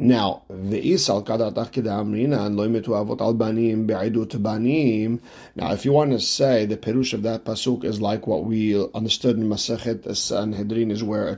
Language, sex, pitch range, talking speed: English, male, 110-125 Hz, 140 wpm